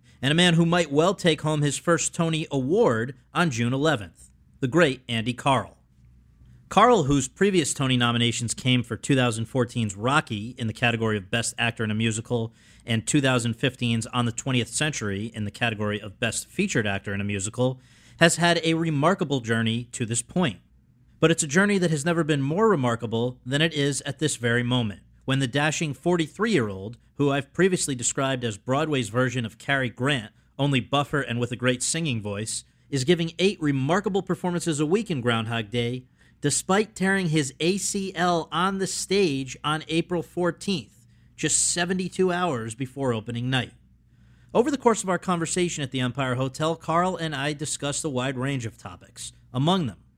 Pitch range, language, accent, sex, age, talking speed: 120-165 Hz, English, American, male, 40-59, 175 wpm